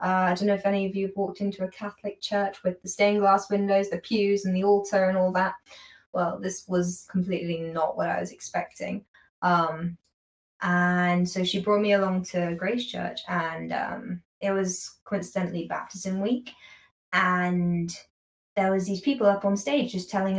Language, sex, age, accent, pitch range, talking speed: English, female, 20-39, British, 175-200 Hz, 185 wpm